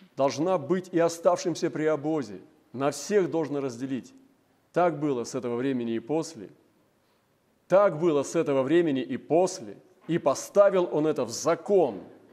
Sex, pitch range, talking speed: male, 140-190 Hz, 145 wpm